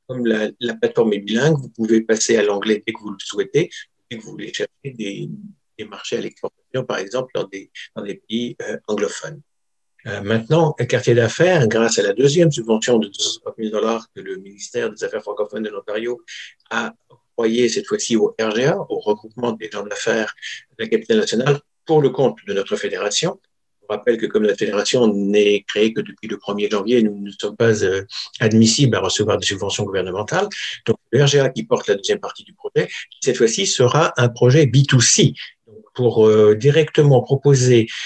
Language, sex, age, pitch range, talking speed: French, male, 60-79, 110-155 Hz, 190 wpm